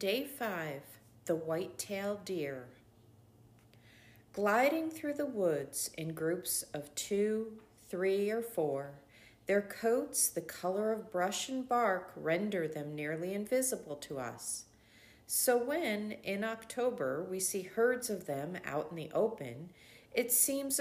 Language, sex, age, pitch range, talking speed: English, female, 40-59, 160-235 Hz, 130 wpm